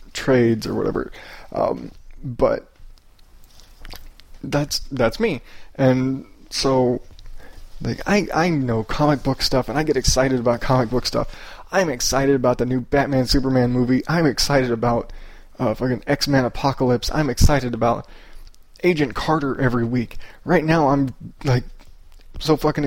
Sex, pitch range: male, 120-145 Hz